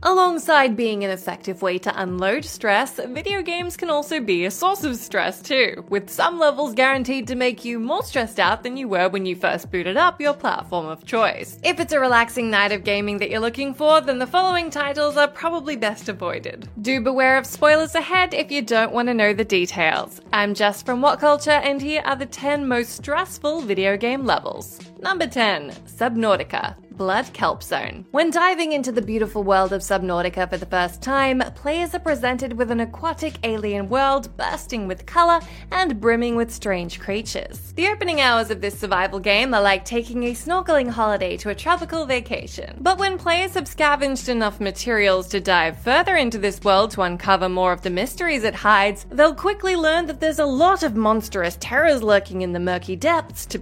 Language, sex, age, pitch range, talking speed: English, female, 20-39, 200-300 Hz, 195 wpm